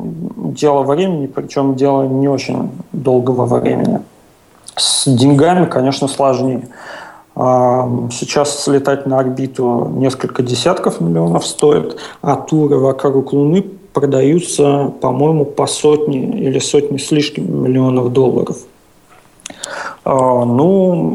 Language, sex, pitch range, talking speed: Russian, male, 130-150 Hz, 95 wpm